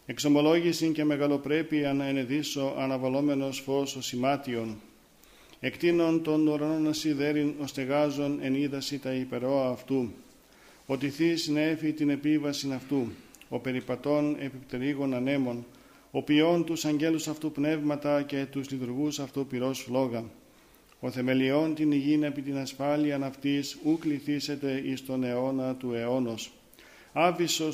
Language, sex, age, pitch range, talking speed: Greek, male, 50-69, 130-150 Hz, 120 wpm